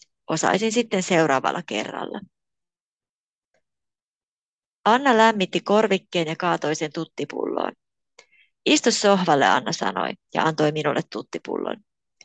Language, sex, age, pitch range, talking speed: Finnish, female, 30-49, 170-225 Hz, 95 wpm